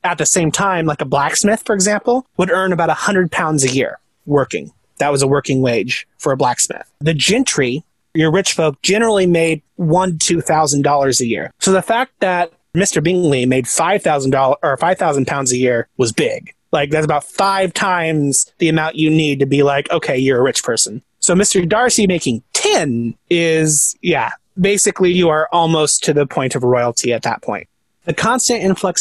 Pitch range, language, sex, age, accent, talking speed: 140-175 Hz, English, male, 30-49, American, 200 wpm